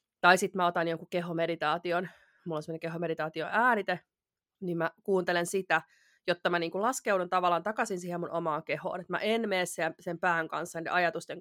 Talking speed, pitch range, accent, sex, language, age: 180 wpm, 165-185 Hz, native, female, Finnish, 30-49